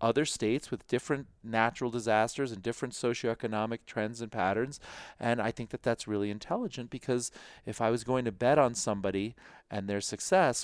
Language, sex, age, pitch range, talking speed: English, male, 40-59, 100-120 Hz, 175 wpm